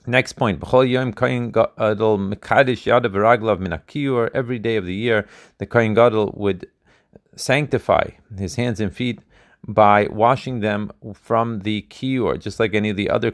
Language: Hebrew